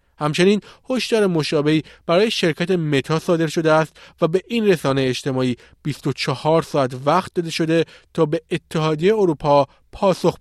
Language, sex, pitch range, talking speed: Persian, male, 150-190 Hz, 140 wpm